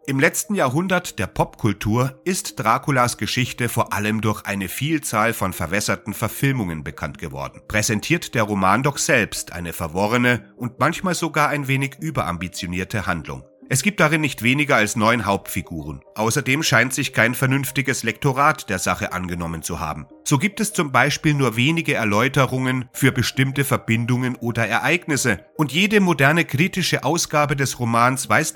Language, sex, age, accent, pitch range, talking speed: German, male, 30-49, German, 105-145 Hz, 150 wpm